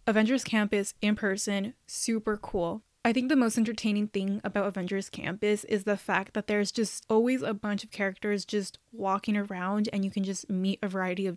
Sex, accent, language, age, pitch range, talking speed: female, American, English, 20-39, 195-225 Hz, 195 wpm